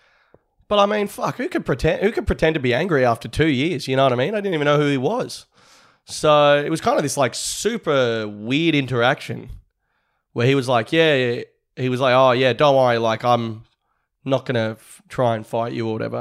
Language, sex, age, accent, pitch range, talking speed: English, male, 20-39, Australian, 120-155 Hz, 220 wpm